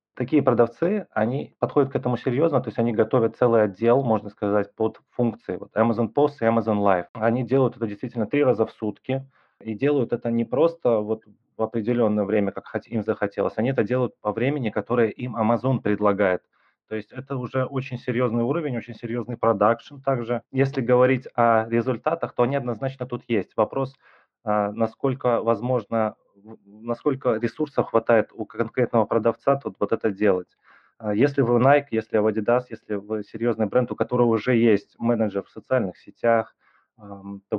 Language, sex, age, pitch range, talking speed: Russian, male, 20-39, 105-125 Hz, 165 wpm